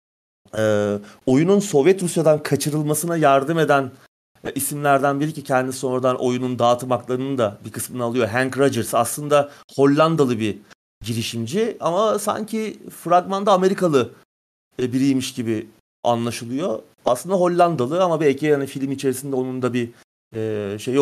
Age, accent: 40-59, native